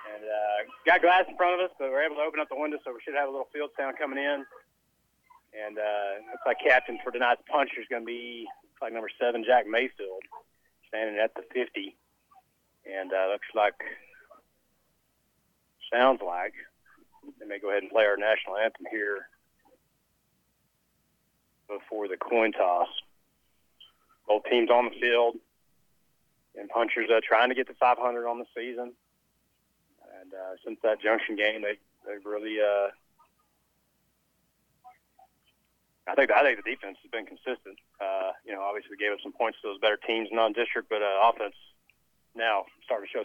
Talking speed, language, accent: 175 wpm, English, American